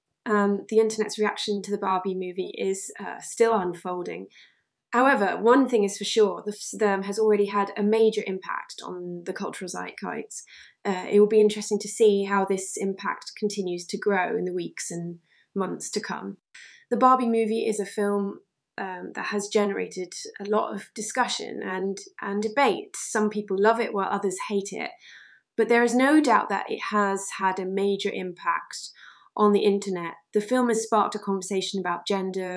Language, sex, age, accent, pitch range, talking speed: English, female, 20-39, British, 190-220 Hz, 180 wpm